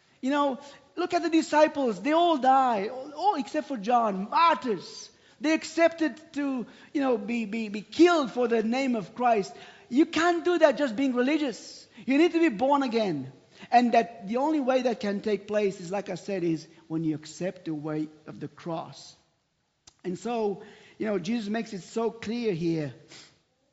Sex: male